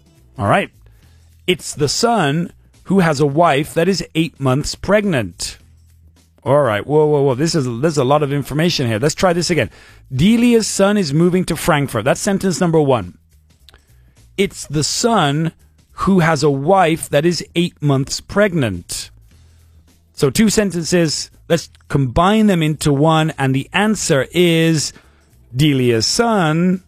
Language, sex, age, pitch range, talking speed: English, male, 40-59, 115-180 Hz, 150 wpm